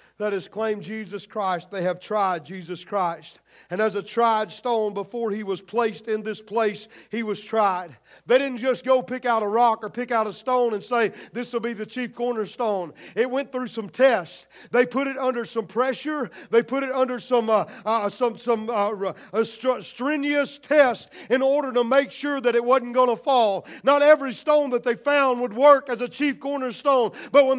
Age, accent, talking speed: 40-59, American, 205 wpm